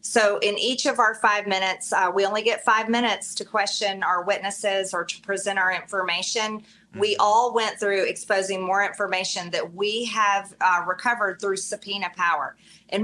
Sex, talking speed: female, 175 wpm